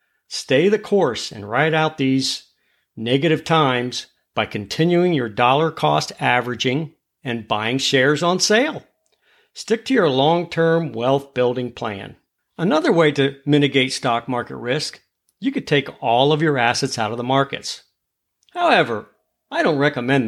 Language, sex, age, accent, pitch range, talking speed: English, male, 50-69, American, 125-180 Hz, 145 wpm